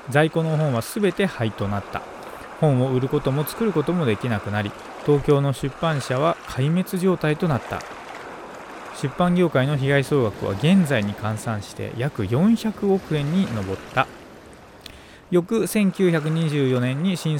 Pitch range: 120-180 Hz